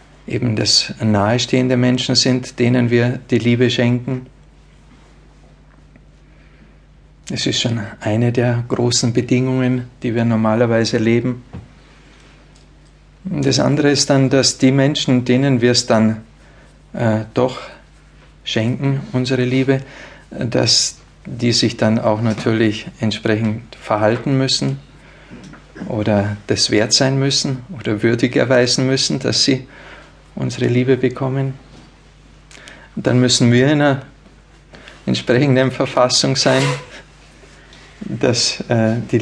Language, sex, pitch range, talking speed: German, male, 115-130 Hz, 110 wpm